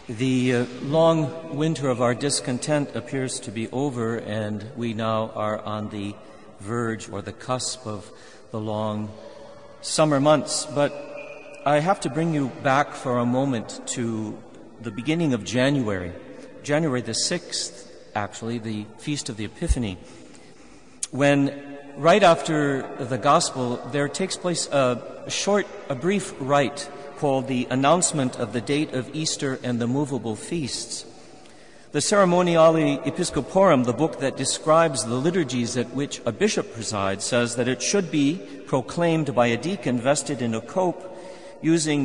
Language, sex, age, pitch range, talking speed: English, male, 50-69, 120-150 Hz, 145 wpm